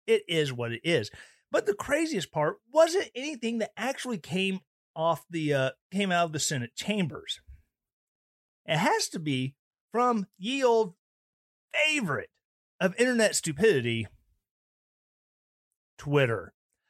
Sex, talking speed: male, 125 wpm